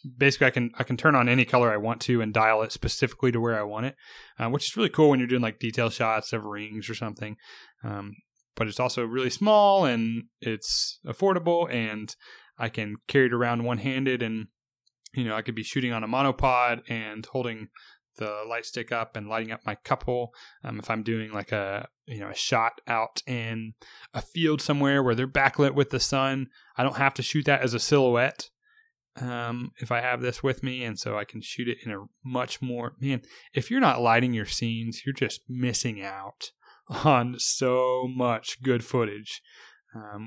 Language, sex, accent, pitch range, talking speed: English, male, American, 115-135 Hz, 205 wpm